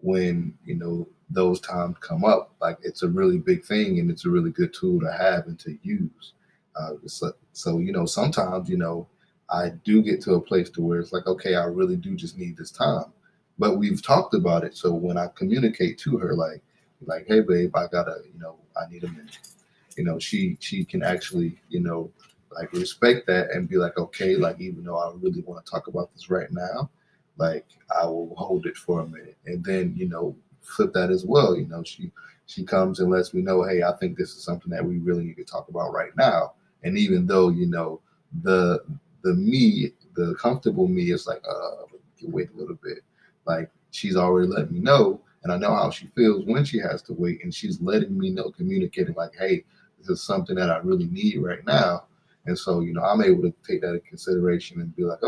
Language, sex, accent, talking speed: English, male, American, 225 wpm